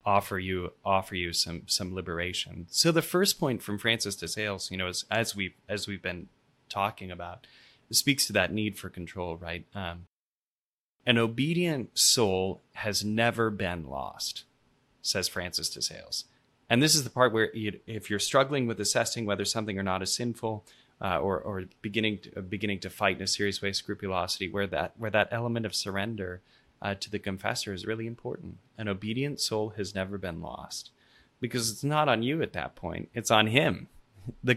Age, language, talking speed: 20-39, English, 190 wpm